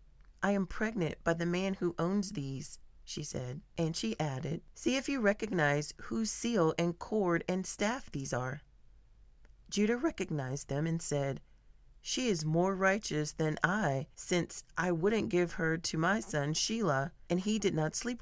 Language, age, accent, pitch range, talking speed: English, 40-59, American, 150-200 Hz, 170 wpm